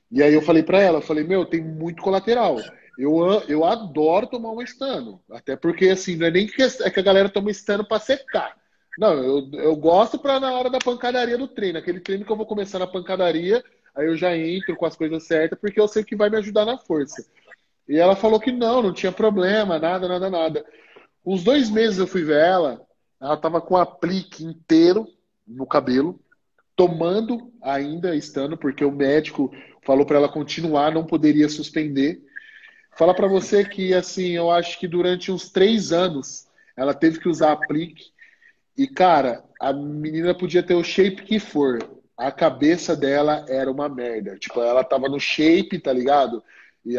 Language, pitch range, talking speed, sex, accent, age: Portuguese, 155-215 Hz, 190 wpm, male, Brazilian, 20-39